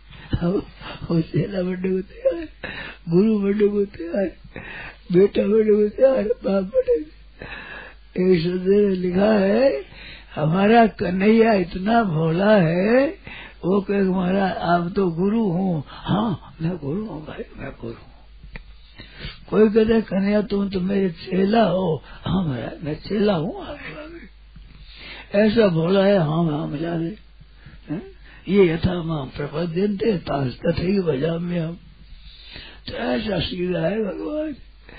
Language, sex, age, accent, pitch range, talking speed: Hindi, male, 60-79, native, 165-200 Hz, 110 wpm